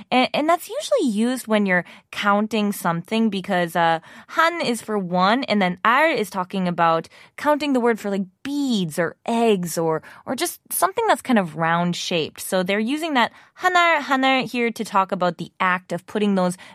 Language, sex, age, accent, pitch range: Korean, female, 20-39, American, 175-235 Hz